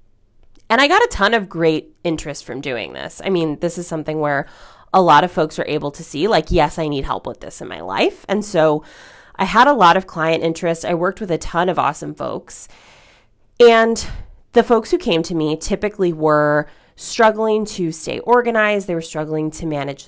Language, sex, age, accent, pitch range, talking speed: English, female, 30-49, American, 155-210 Hz, 210 wpm